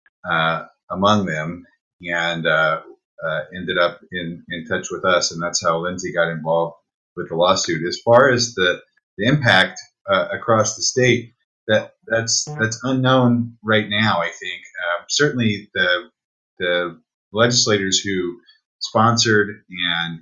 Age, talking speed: 30-49, 140 wpm